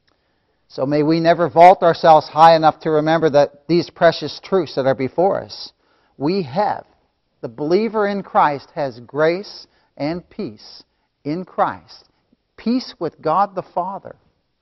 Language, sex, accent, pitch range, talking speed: English, male, American, 140-180 Hz, 145 wpm